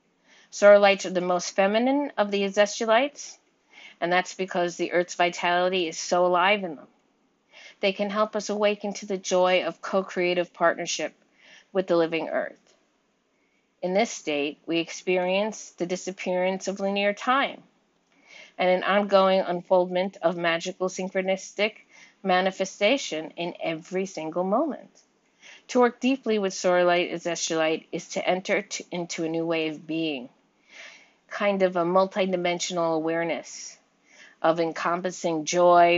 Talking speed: 130 wpm